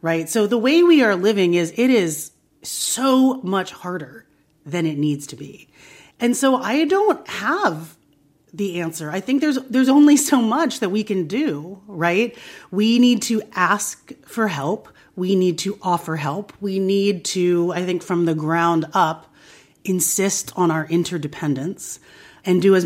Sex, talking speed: female, 170 wpm